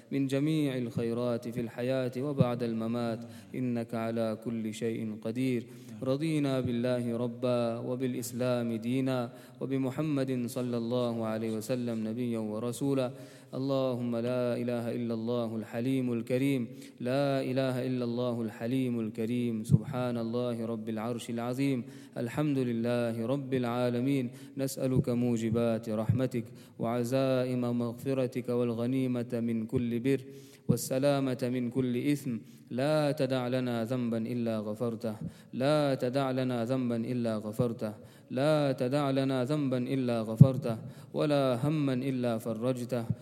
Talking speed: 110 wpm